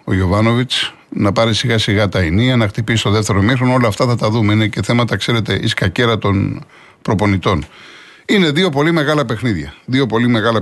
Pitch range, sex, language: 100-135 Hz, male, Greek